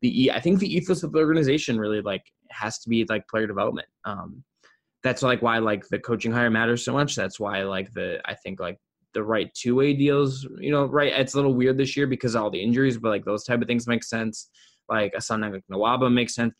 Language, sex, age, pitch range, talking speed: English, male, 10-29, 110-140 Hz, 255 wpm